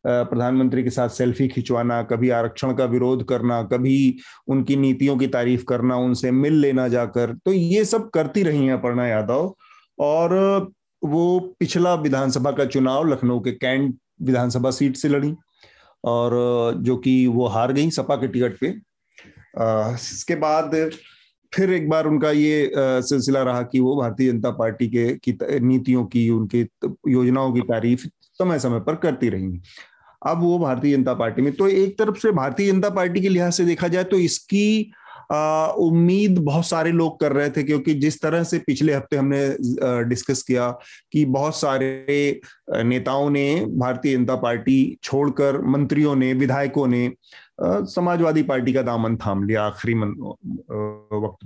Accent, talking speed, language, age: native, 160 wpm, Hindi, 30-49